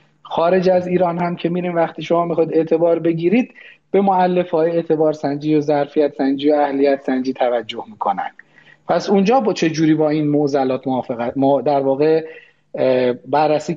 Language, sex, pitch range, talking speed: Persian, male, 140-180 Hz, 160 wpm